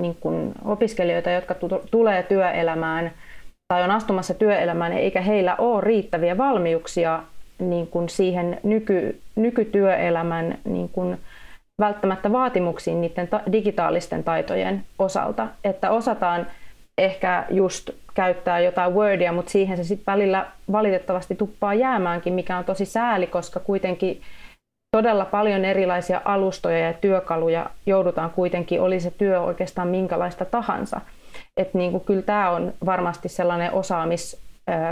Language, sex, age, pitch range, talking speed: Finnish, female, 30-49, 175-200 Hz, 110 wpm